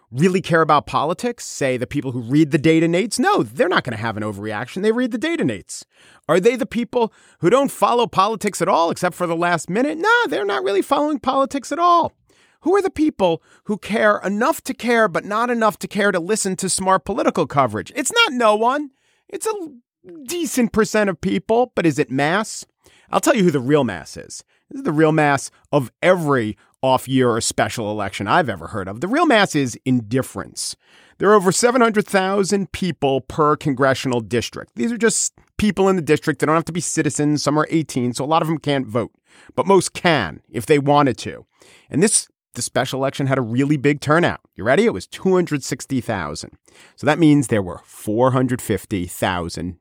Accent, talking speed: American, 205 wpm